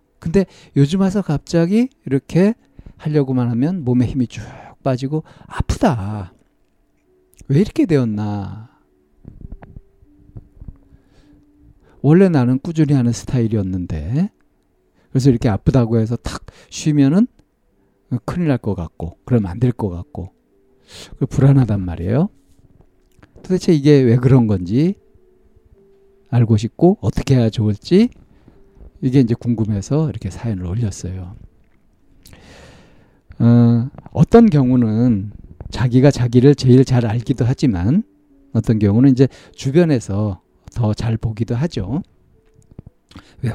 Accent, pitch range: native, 100-145 Hz